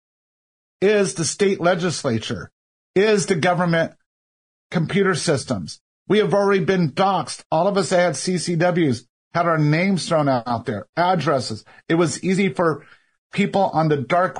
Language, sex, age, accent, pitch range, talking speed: English, male, 50-69, American, 140-180 Hz, 140 wpm